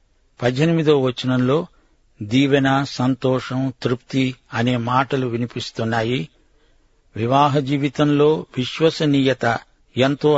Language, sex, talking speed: Telugu, male, 70 wpm